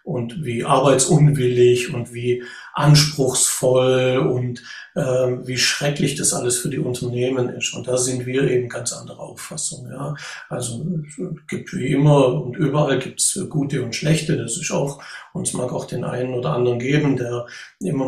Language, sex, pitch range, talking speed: German, male, 125-155 Hz, 165 wpm